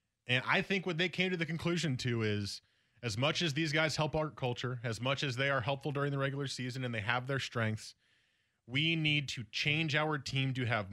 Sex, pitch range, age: male, 110-140 Hz, 20-39